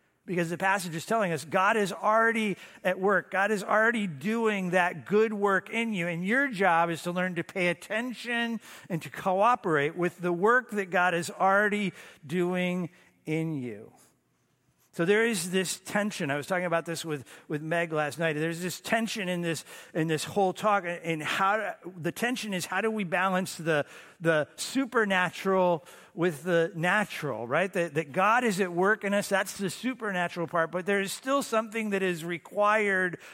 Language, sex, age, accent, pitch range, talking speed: English, male, 50-69, American, 170-210 Hz, 185 wpm